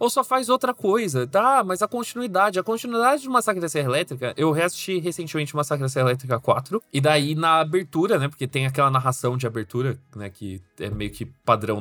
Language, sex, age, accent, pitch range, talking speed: Portuguese, male, 20-39, Brazilian, 145-215 Hz, 215 wpm